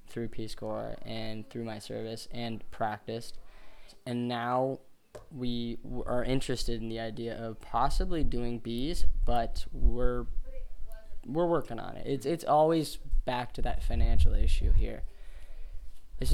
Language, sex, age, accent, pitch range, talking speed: English, male, 10-29, American, 110-125 Hz, 135 wpm